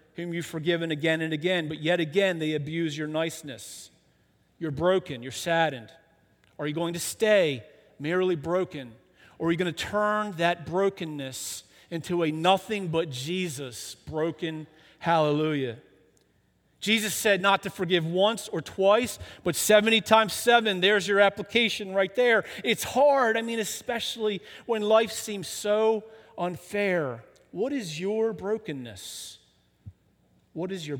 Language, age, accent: English, 40-59, American